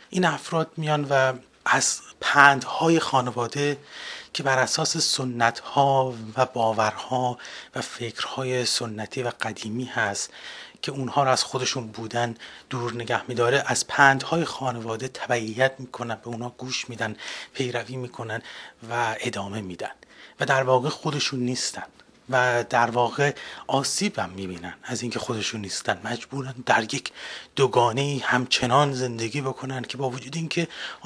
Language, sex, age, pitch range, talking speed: English, male, 30-49, 115-140 Hz, 130 wpm